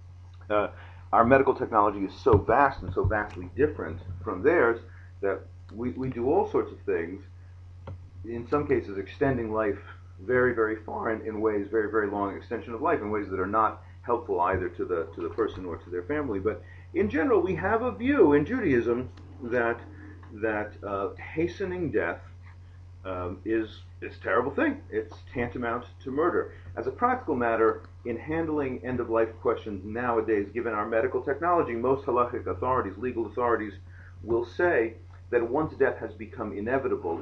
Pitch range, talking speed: 90-120 Hz, 165 wpm